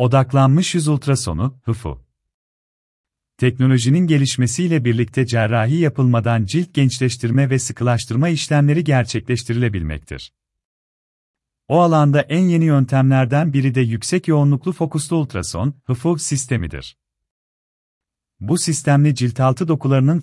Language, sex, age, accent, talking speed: Turkish, male, 40-59, native, 100 wpm